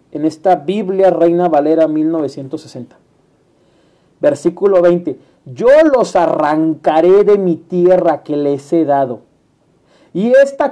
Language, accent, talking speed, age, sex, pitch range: Spanish, Mexican, 110 wpm, 40-59, male, 150-200 Hz